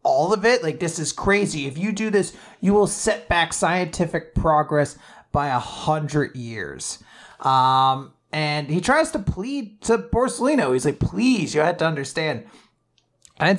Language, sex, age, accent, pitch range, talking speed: English, male, 30-49, American, 150-205 Hz, 165 wpm